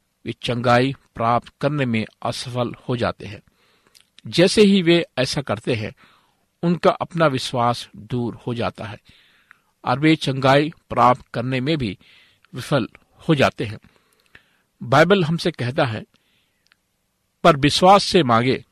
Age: 50-69